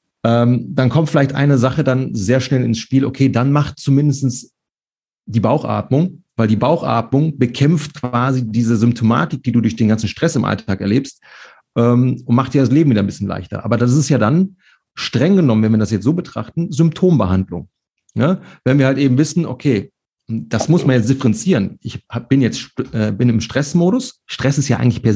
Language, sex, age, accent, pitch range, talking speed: German, male, 40-59, German, 115-145 Hz, 190 wpm